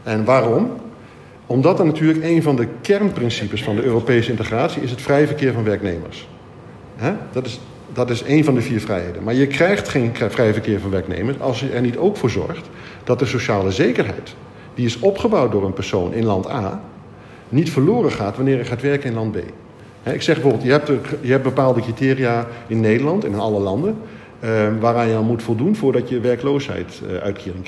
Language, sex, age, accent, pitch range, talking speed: Dutch, male, 50-69, Dutch, 110-135 Hz, 185 wpm